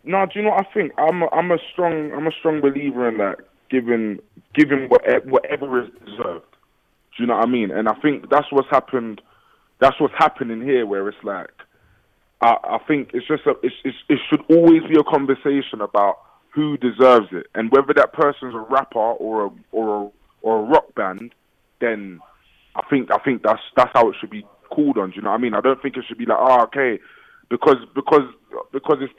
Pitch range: 115-155 Hz